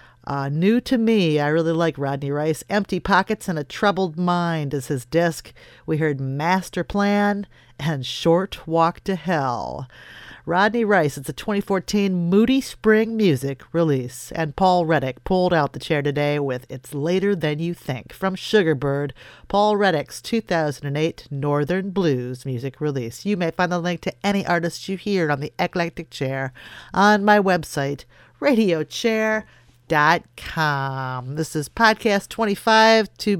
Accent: American